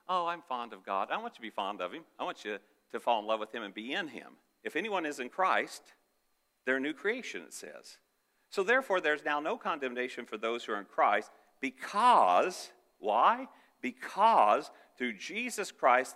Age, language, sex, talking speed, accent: 50-69, English, male, 205 wpm, American